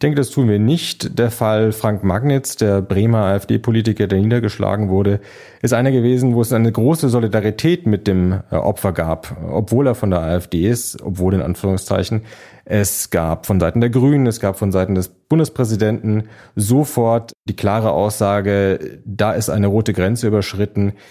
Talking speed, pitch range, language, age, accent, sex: 170 wpm, 95-115 Hz, German, 30-49, German, male